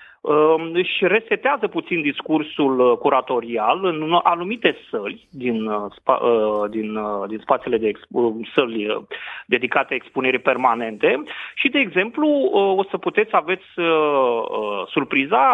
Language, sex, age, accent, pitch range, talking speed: Romanian, male, 30-49, native, 130-205 Hz, 95 wpm